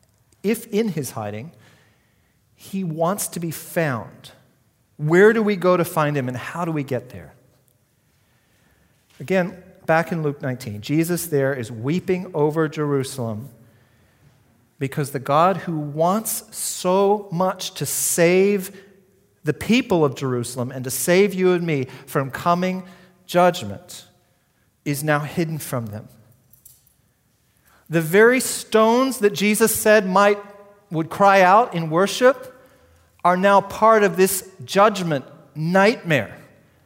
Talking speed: 130 wpm